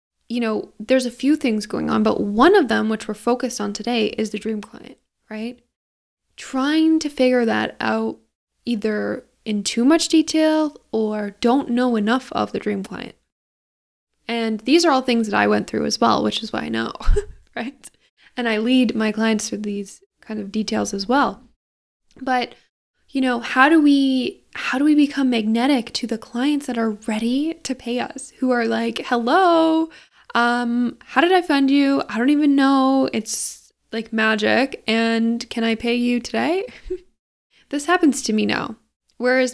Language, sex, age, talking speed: English, female, 10-29, 180 wpm